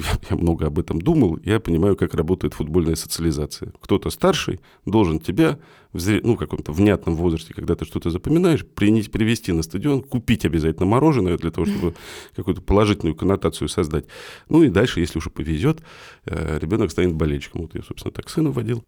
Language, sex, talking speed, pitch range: Russian, male, 170 wpm, 80-105 Hz